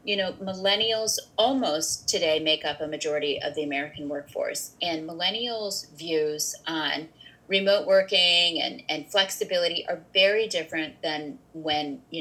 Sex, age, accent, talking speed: female, 30-49, American, 140 wpm